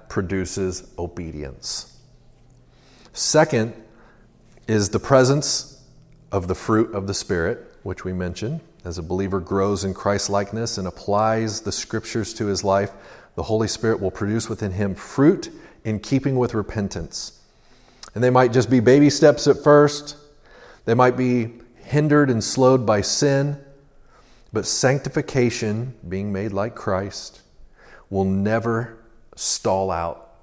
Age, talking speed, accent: 40-59, 130 wpm, American